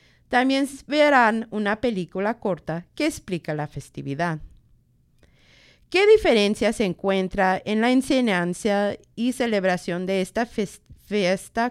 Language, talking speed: English, 110 wpm